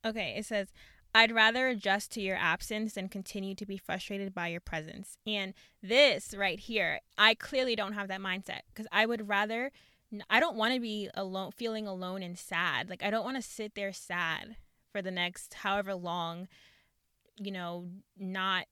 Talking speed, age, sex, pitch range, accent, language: 185 wpm, 20-39, female, 185-215 Hz, American, English